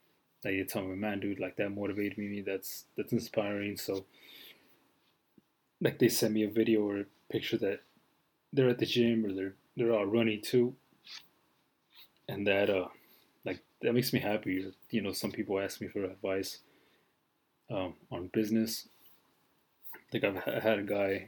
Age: 20-39